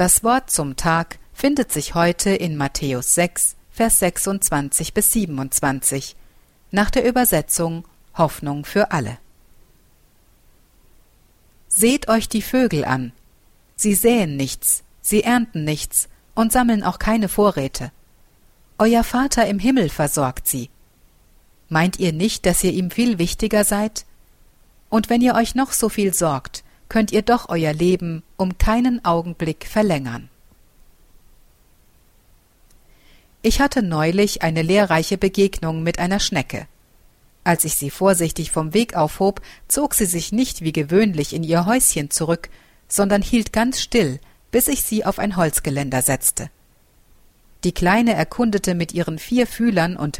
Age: 50-69